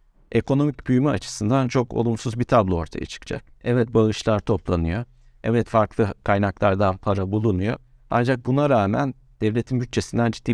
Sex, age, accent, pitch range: male, 50-69, native, 100-130 Hz